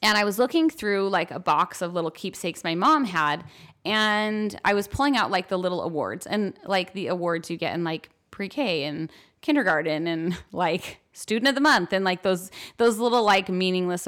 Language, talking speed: English, 200 wpm